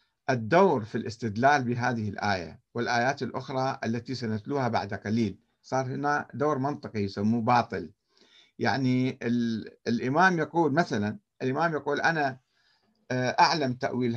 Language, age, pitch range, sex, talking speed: Arabic, 50-69, 120-175 Hz, male, 110 wpm